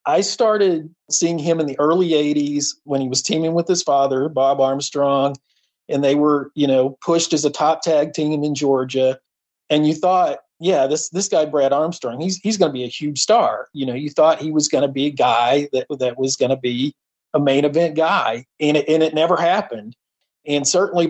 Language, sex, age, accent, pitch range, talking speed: English, male, 40-59, American, 135-155 Hz, 215 wpm